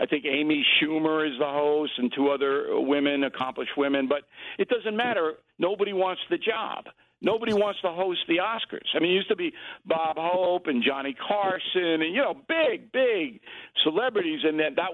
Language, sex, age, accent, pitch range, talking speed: English, male, 60-79, American, 145-220 Hz, 190 wpm